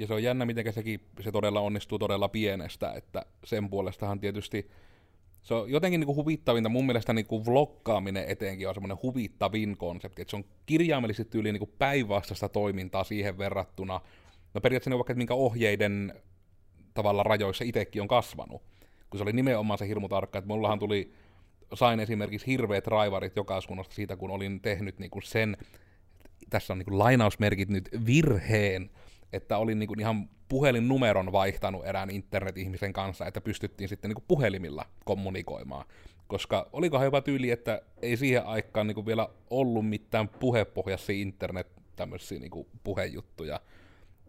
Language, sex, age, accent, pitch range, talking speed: Finnish, male, 30-49, native, 95-110 Hz, 145 wpm